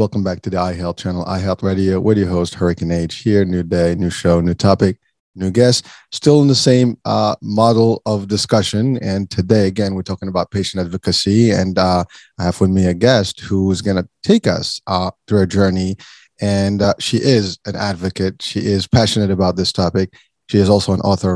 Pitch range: 95-110 Hz